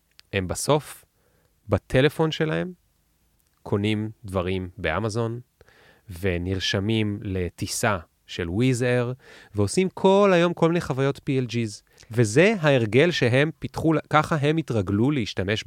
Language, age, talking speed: Hebrew, 30-49, 100 wpm